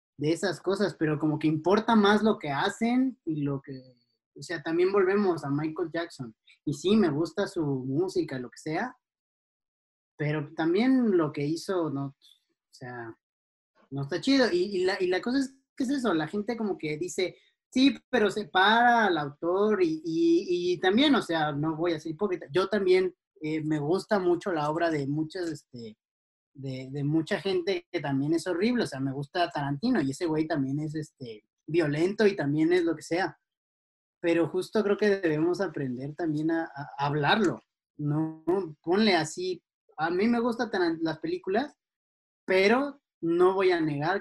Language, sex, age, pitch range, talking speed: Spanish, male, 30-49, 145-195 Hz, 180 wpm